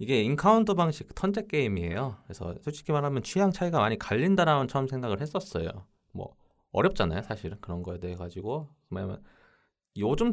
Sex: male